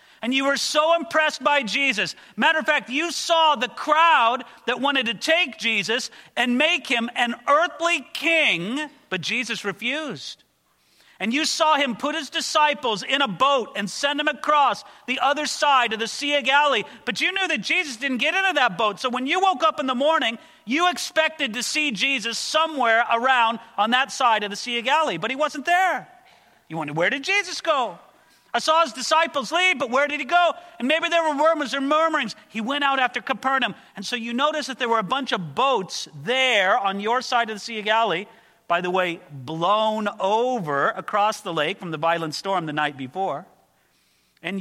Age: 40-59